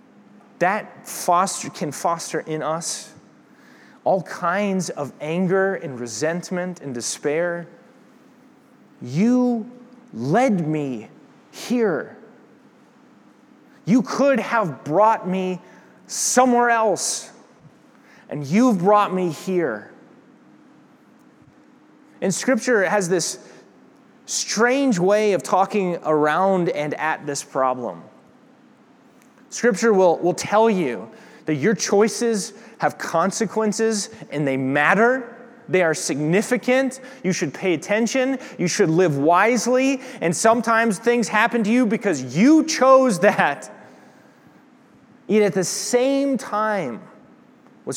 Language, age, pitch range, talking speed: English, 30-49, 175-245 Hz, 105 wpm